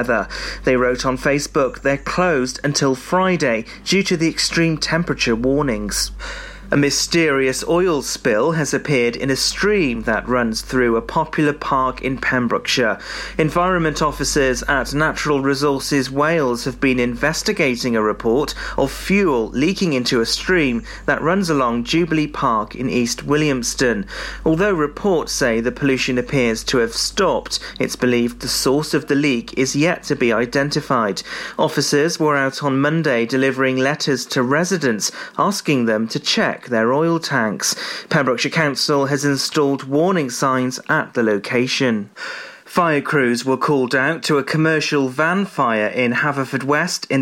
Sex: male